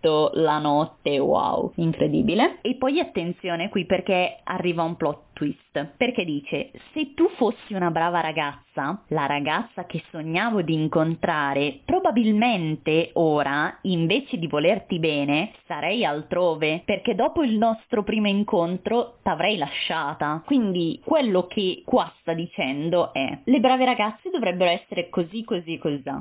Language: Italian